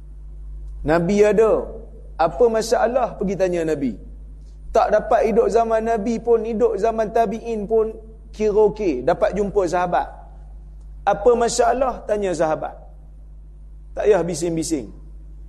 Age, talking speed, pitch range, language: 40-59, 110 wpm, 115-180 Hz, Malay